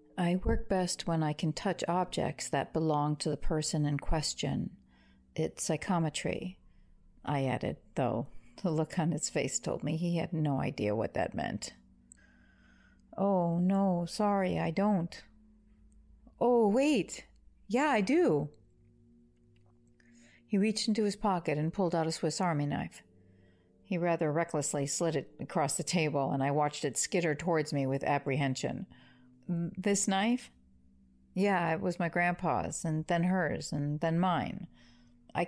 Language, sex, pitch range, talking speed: English, female, 120-185 Hz, 145 wpm